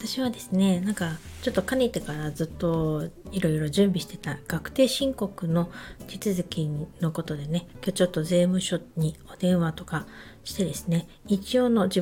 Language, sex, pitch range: Japanese, female, 170-215 Hz